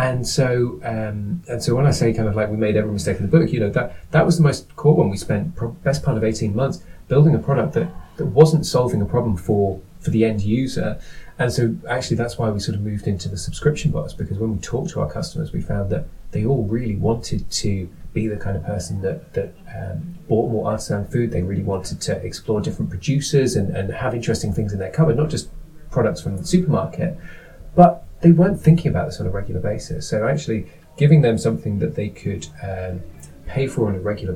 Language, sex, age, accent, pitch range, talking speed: English, male, 30-49, British, 105-150 Hz, 235 wpm